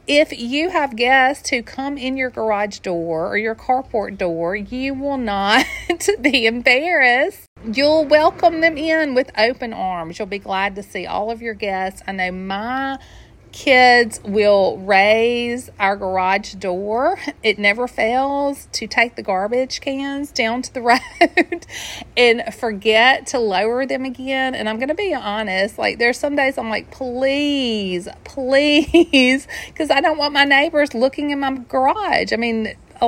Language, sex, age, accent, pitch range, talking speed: English, female, 40-59, American, 200-270 Hz, 160 wpm